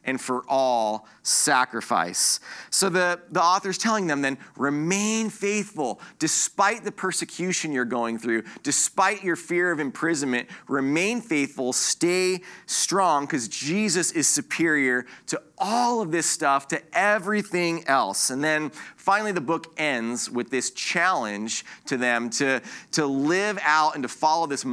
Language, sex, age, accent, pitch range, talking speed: English, male, 30-49, American, 130-180 Hz, 145 wpm